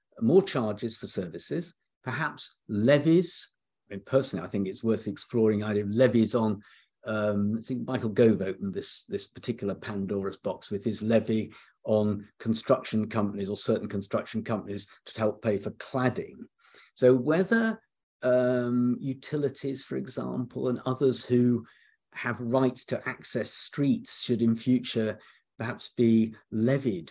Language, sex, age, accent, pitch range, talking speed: English, male, 50-69, British, 110-140 Hz, 140 wpm